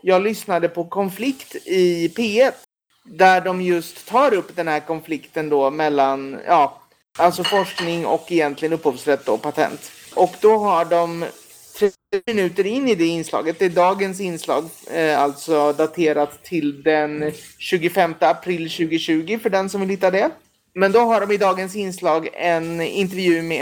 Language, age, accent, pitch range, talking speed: Swedish, 30-49, native, 165-195 Hz, 155 wpm